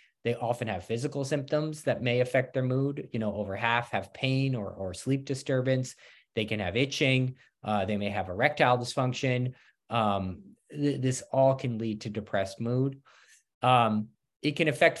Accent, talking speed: American, 170 wpm